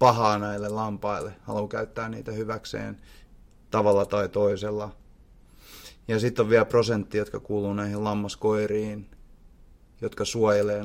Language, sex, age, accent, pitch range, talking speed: Finnish, male, 30-49, native, 105-115 Hz, 115 wpm